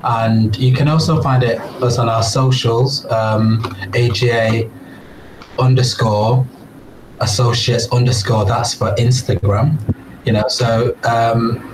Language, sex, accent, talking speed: English, male, British, 110 wpm